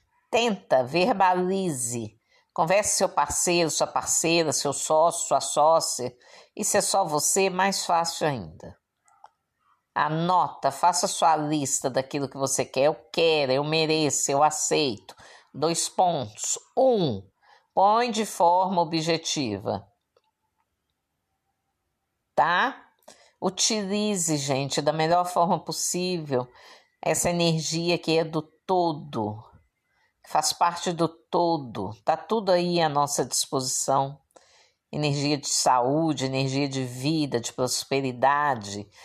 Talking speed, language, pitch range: 110 wpm, Portuguese, 140-180 Hz